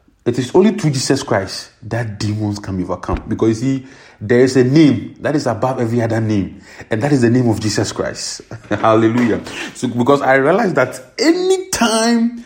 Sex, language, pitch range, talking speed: male, English, 120-180 Hz, 195 wpm